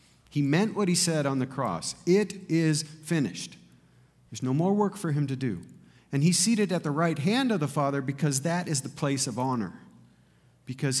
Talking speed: 200 wpm